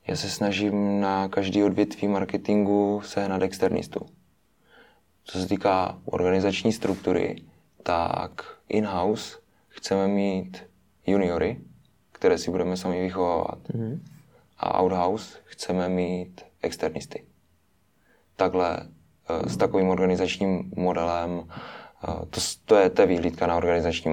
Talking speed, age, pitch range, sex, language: 100 wpm, 20-39, 90-100 Hz, male, Czech